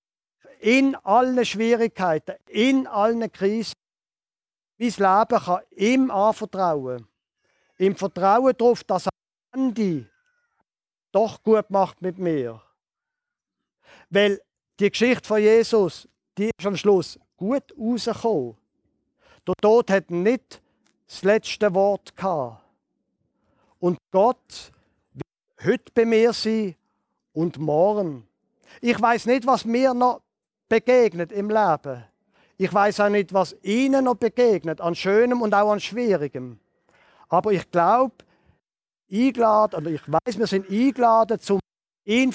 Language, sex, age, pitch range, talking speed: German, male, 50-69, 180-230 Hz, 120 wpm